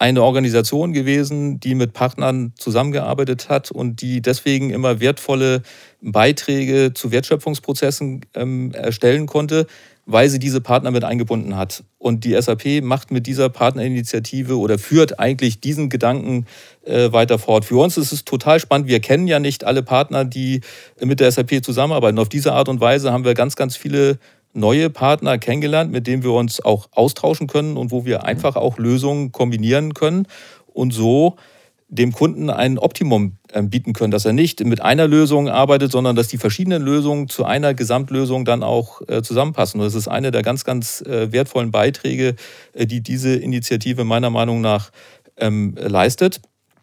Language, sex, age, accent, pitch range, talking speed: German, male, 40-59, German, 120-140 Hz, 165 wpm